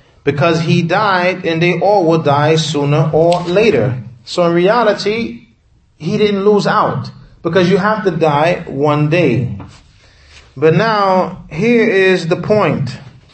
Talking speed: 140 wpm